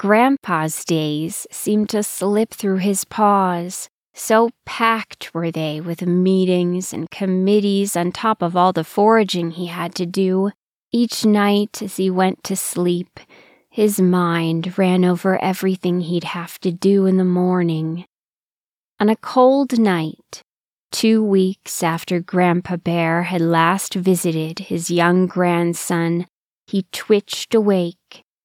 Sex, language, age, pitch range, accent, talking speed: female, English, 20-39, 175-200 Hz, American, 135 wpm